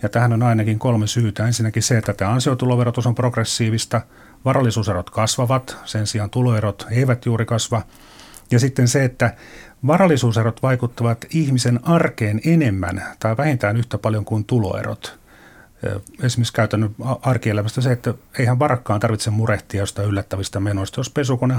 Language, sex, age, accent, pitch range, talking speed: Finnish, male, 40-59, native, 105-130 Hz, 140 wpm